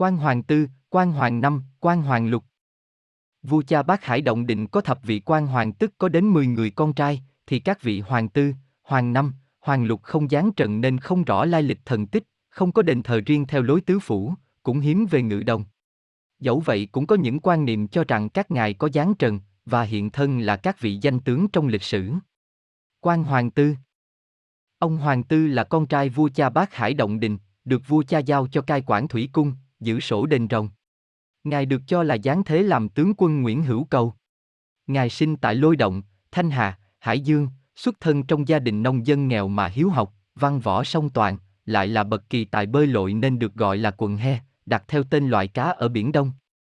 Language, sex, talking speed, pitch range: Vietnamese, male, 220 wpm, 110-155 Hz